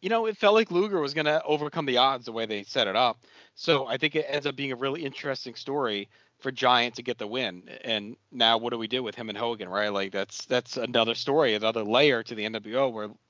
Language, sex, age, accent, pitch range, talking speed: English, male, 40-59, American, 115-145 Hz, 255 wpm